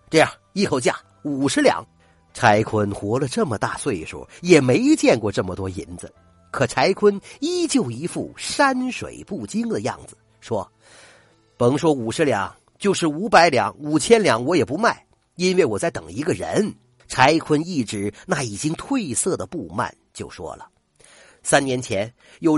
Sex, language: male, Chinese